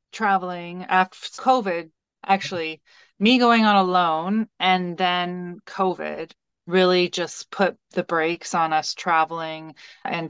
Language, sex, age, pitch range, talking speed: English, female, 20-39, 160-185 Hz, 115 wpm